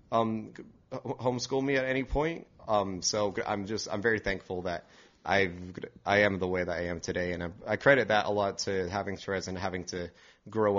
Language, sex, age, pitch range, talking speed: English, male, 30-49, 90-105 Hz, 205 wpm